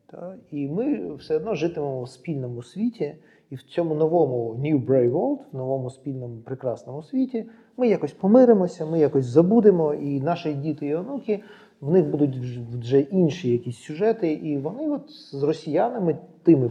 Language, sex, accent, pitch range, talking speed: Ukrainian, male, native, 130-175 Hz, 155 wpm